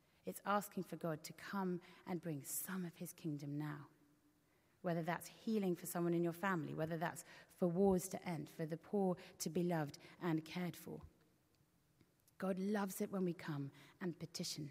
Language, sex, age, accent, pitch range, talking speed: English, female, 30-49, British, 150-180 Hz, 180 wpm